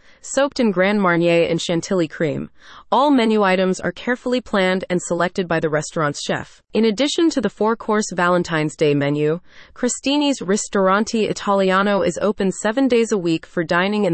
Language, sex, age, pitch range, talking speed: English, female, 30-49, 170-225 Hz, 165 wpm